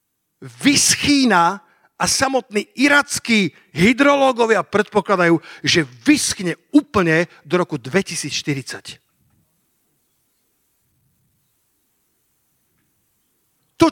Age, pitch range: 50-69, 185-255 Hz